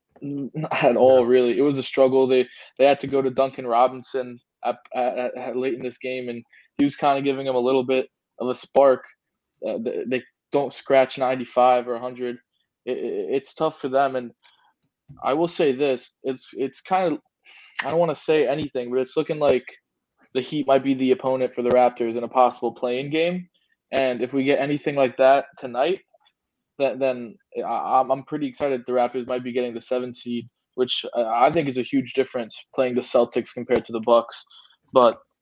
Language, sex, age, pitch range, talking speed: English, male, 20-39, 125-135 Hz, 205 wpm